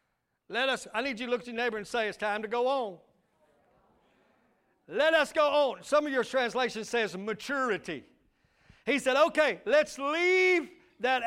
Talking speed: 175 wpm